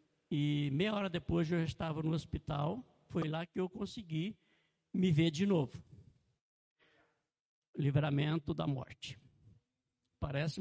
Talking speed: 125 wpm